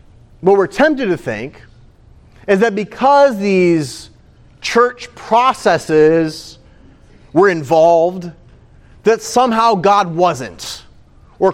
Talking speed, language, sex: 95 wpm, English, male